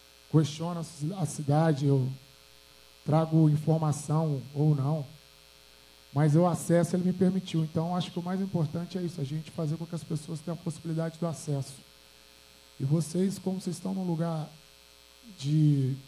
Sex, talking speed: male, 155 wpm